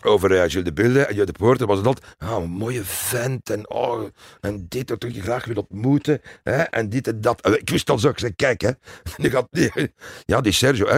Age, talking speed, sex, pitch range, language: 60-79, 255 wpm, male, 105-150 Hz, Dutch